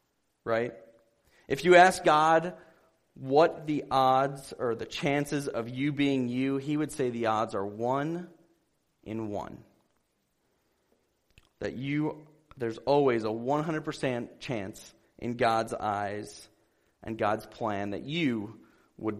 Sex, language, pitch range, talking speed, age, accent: male, English, 115-150 Hz, 125 wpm, 30-49, American